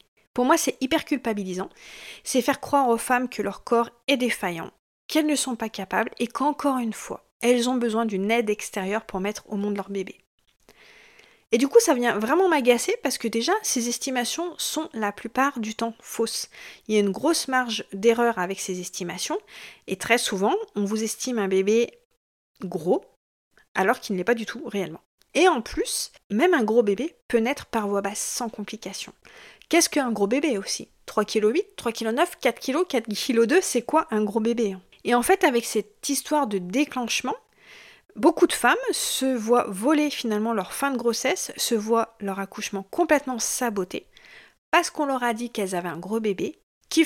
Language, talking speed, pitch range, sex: French, 195 wpm, 205-280 Hz, female